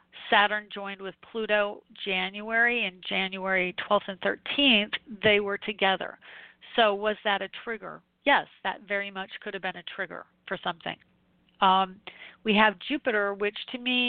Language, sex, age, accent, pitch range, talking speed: English, female, 40-59, American, 190-215 Hz, 155 wpm